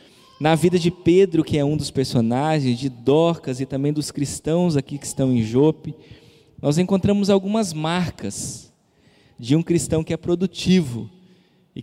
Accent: Brazilian